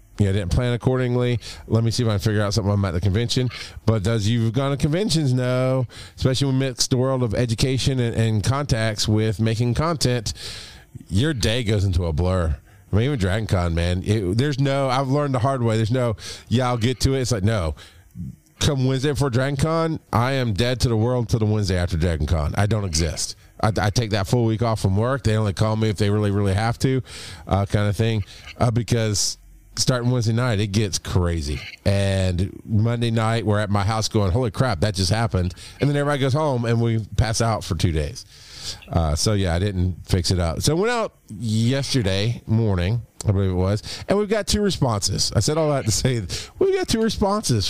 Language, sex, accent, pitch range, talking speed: English, male, American, 100-125 Hz, 220 wpm